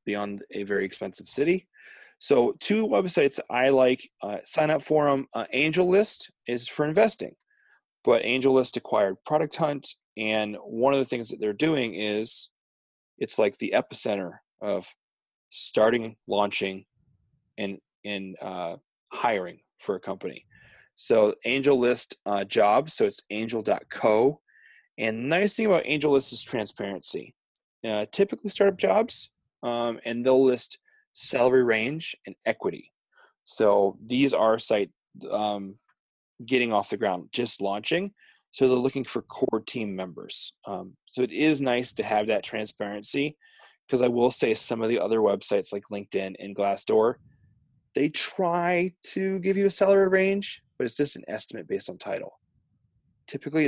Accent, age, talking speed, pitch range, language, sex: American, 30-49, 150 wpm, 110-160 Hz, English, male